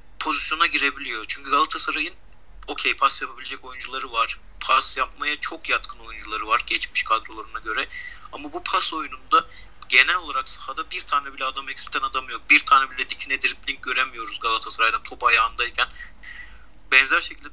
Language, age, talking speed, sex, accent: Turkish, 50-69, 145 wpm, male, native